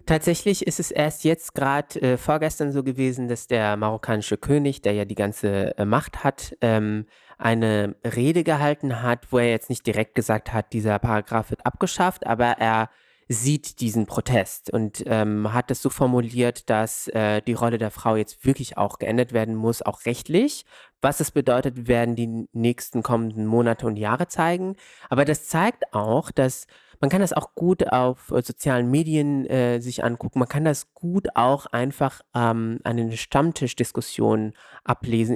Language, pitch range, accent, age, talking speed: German, 110-140 Hz, German, 20-39, 170 wpm